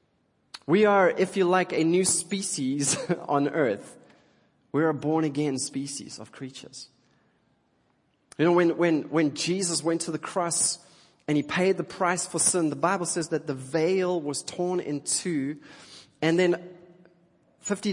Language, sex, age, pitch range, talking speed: English, male, 30-49, 135-175 Hz, 155 wpm